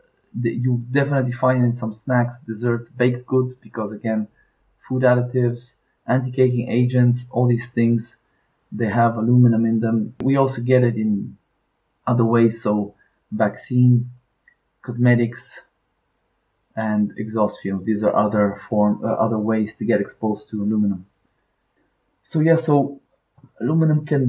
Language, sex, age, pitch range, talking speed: English, male, 20-39, 110-130 Hz, 135 wpm